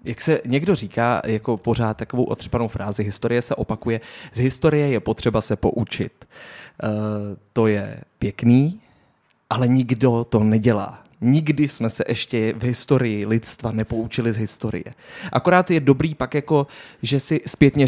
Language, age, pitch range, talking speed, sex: Czech, 20-39, 110-135 Hz, 150 wpm, male